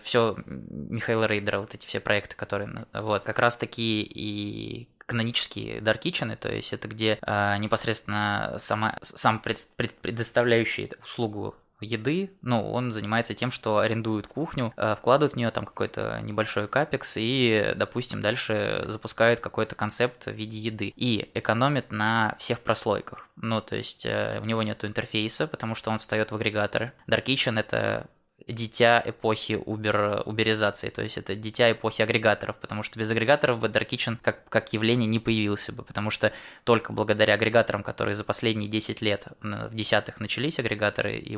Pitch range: 105-115 Hz